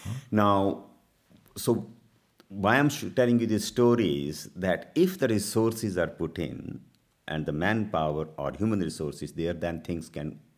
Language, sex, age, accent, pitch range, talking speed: English, male, 50-69, Indian, 75-105 Hz, 145 wpm